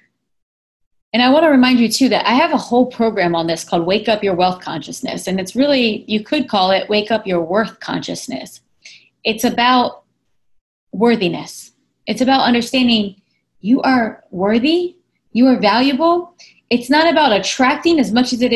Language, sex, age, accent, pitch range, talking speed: English, female, 20-39, American, 220-305 Hz, 170 wpm